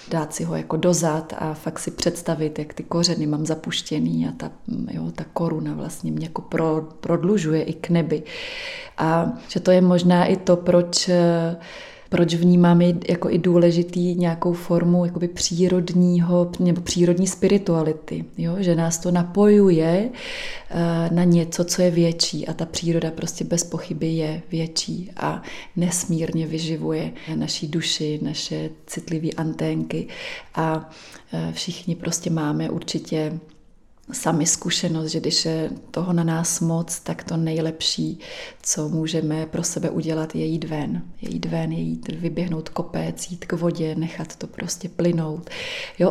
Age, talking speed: 30-49, 145 wpm